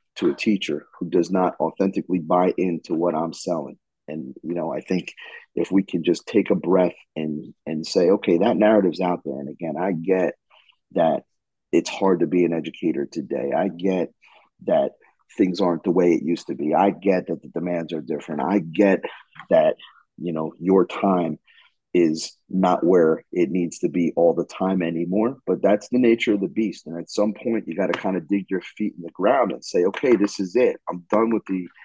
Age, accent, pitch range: 30-49, American, 90-110 Hz